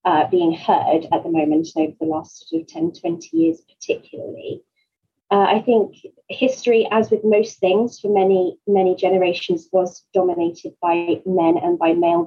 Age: 30-49